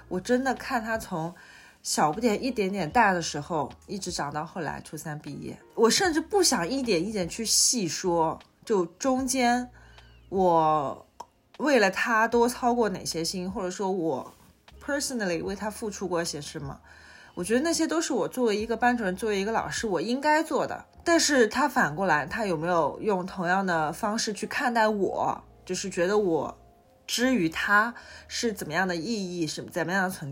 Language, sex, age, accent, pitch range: Chinese, female, 20-39, native, 180-255 Hz